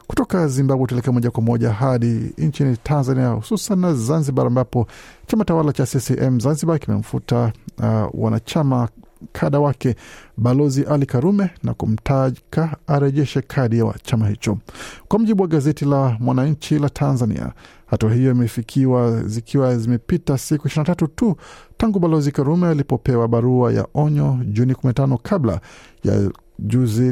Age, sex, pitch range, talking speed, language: 50-69, male, 120-145 Hz, 135 wpm, Swahili